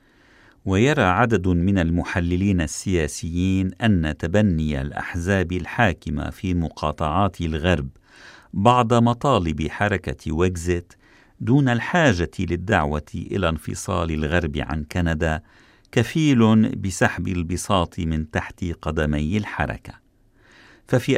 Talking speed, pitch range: 90 wpm, 85-105 Hz